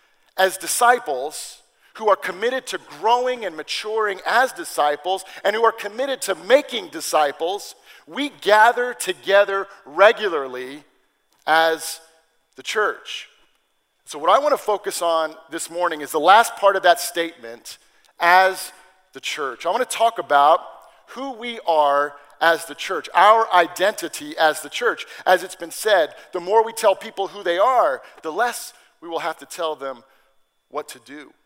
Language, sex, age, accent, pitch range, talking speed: English, male, 40-59, American, 160-230 Hz, 160 wpm